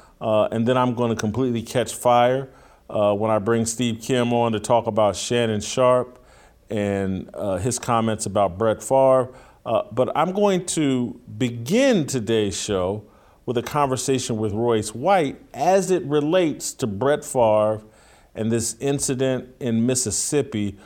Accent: American